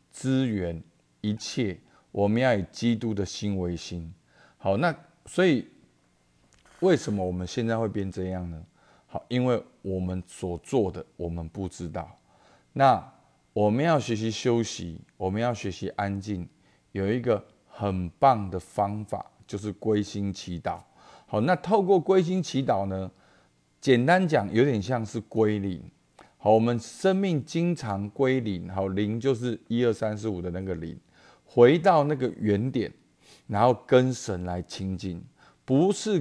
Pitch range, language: 95-120 Hz, Chinese